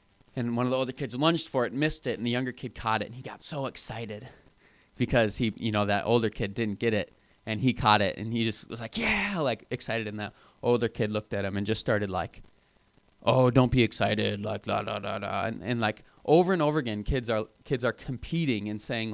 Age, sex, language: 20-39, male, English